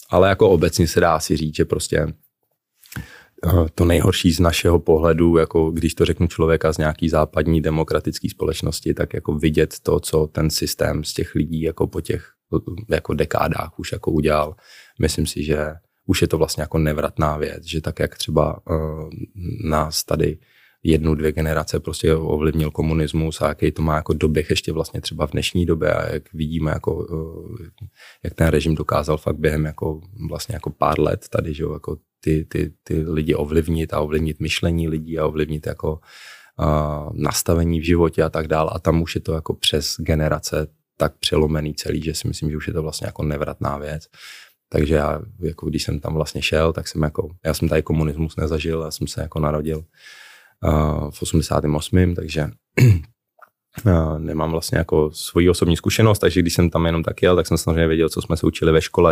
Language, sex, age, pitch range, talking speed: Czech, male, 20-39, 75-85 Hz, 185 wpm